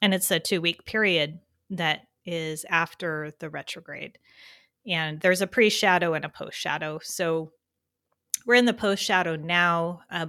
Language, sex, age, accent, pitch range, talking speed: English, female, 30-49, American, 155-195 Hz, 140 wpm